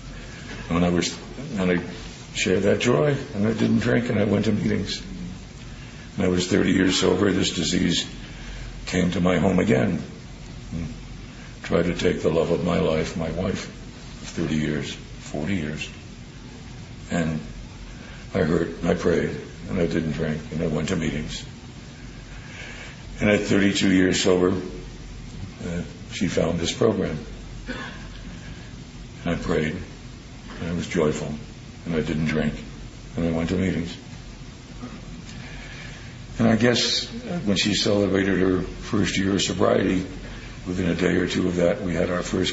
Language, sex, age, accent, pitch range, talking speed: English, male, 60-79, American, 85-110 Hz, 155 wpm